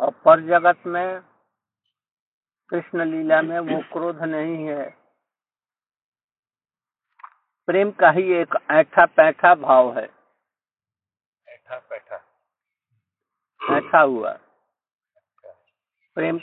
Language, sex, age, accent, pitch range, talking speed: Hindi, male, 50-69, native, 155-190 Hz, 75 wpm